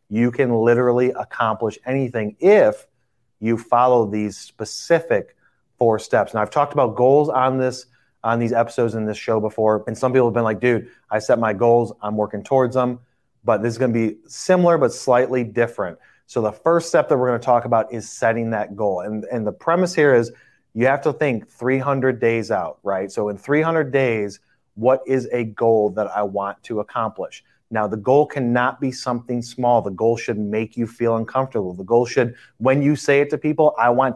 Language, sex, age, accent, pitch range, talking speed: English, male, 30-49, American, 110-130 Hz, 205 wpm